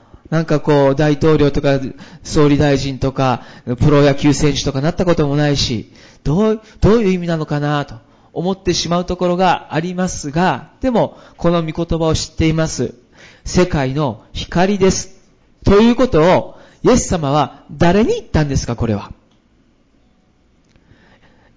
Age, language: 40-59, Japanese